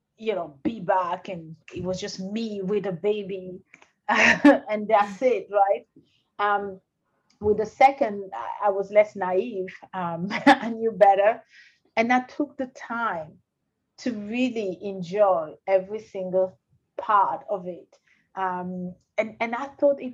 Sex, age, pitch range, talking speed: female, 30-49, 190-240 Hz, 140 wpm